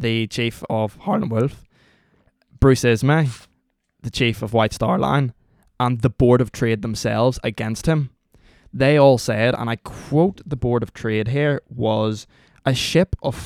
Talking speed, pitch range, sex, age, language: 160 wpm, 110-130 Hz, male, 20-39, English